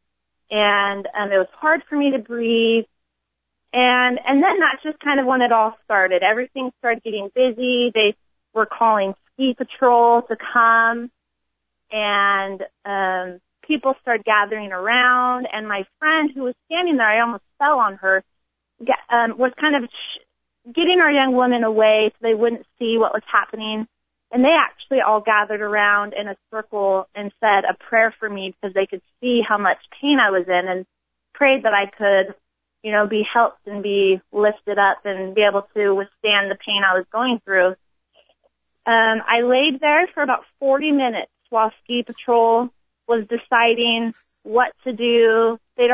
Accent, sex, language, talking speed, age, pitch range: American, female, English, 170 wpm, 30-49, 200-250 Hz